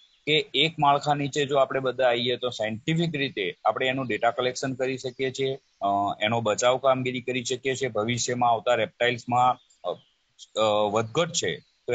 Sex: male